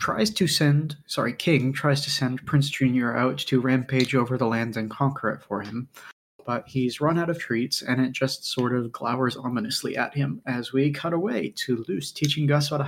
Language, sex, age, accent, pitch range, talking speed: English, male, 20-39, American, 125-145 Hz, 215 wpm